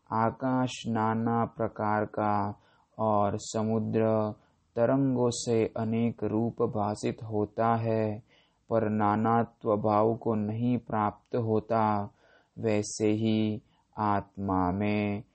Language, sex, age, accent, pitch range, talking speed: Hindi, male, 20-39, native, 105-110 Hz, 95 wpm